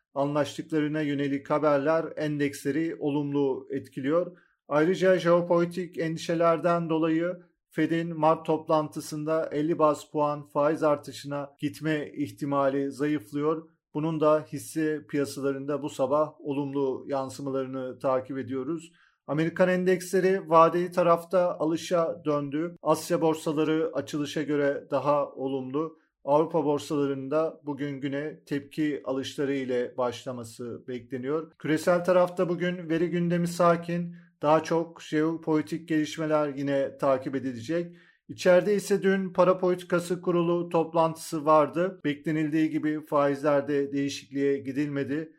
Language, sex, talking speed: Turkish, male, 105 wpm